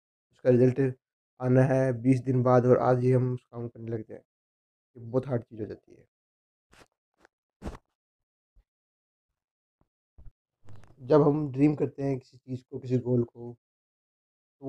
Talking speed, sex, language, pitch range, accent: 145 wpm, male, Hindi, 115-135 Hz, native